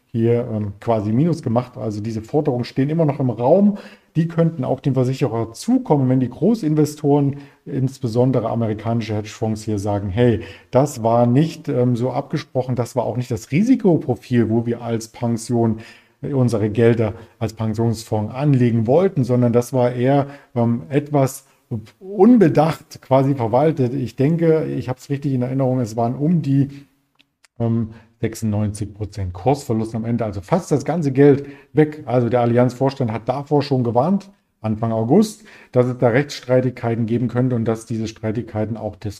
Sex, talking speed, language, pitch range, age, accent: male, 160 wpm, German, 115-140 Hz, 40-59, German